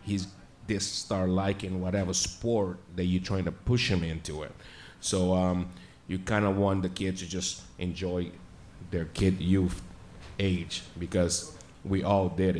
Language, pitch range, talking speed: English, 90-100 Hz, 155 wpm